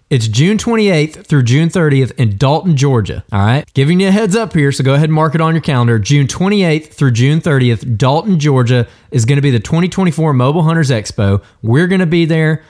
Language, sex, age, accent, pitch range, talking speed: English, male, 20-39, American, 120-160 Hz, 220 wpm